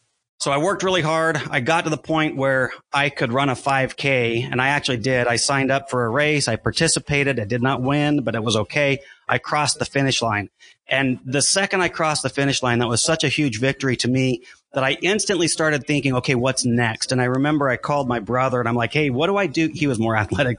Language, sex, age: English, male, 30-49